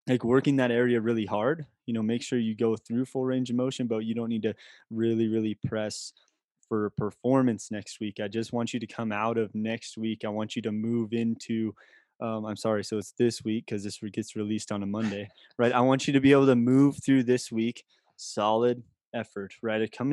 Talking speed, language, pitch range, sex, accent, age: 225 wpm, English, 110-125 Hz, male, American, 20-39